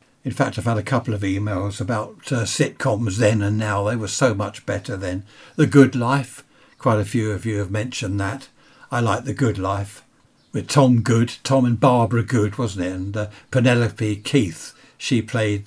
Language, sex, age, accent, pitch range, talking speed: English, male, 60-79, British, 105-130 Hz, 195 wpm